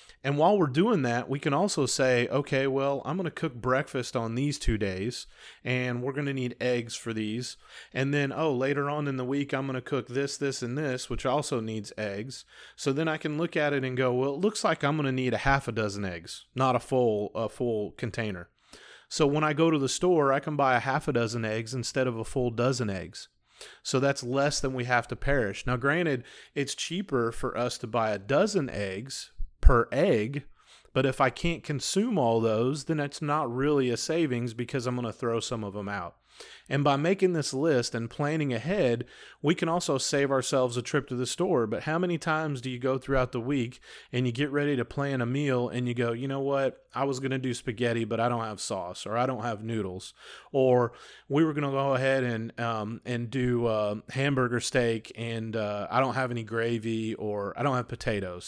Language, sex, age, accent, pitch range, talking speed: English, male, 30-49, American, 115-140 Hz, 230 wpm